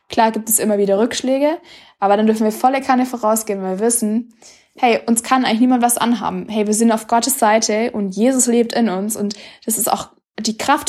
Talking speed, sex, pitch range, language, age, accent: 220 wpm, female, 205-240 Hz, German, 20-39, German